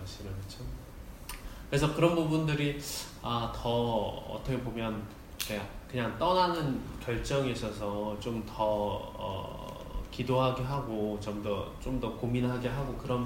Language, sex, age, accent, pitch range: Korean, male, 20-39, native, 110-140 Hz